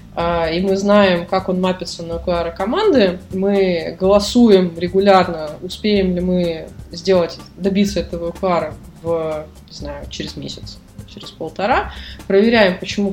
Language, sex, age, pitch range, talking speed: Russian, female, 20-39, 175-205 Hz, 130 wpm